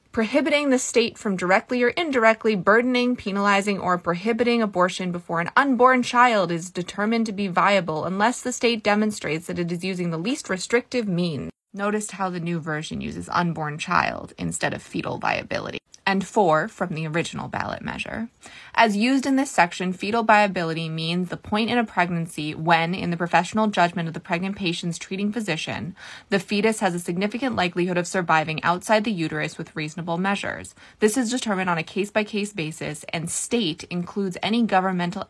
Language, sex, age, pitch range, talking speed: English, female, 20-39, 175-230 Hz, 175 wpm